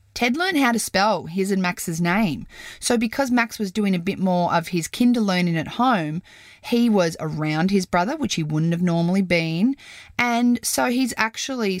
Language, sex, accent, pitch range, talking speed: English, female, Australian, 160-210 Hz, 195 wpm